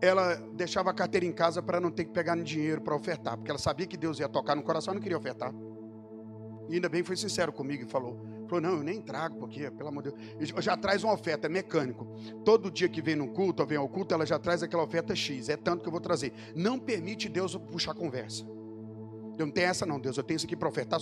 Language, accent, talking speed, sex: Portuguese, Brazilian, 265 wpm, male